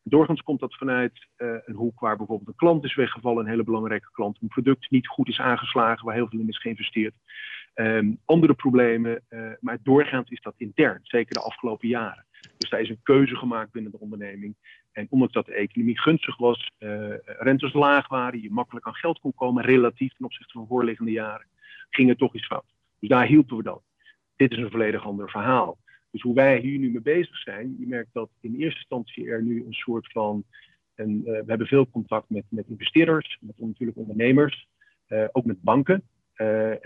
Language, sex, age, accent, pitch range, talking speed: Dutch, male, 40-59, Dutch, 110-135 Hz, 205 wpm